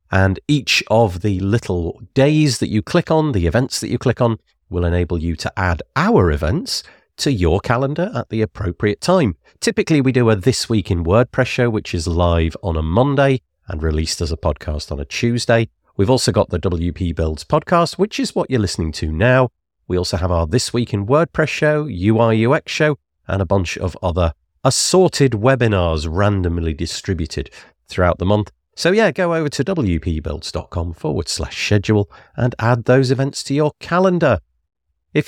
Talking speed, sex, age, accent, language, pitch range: 185 wpm, male, 40-59, British, English, 85-130 Hz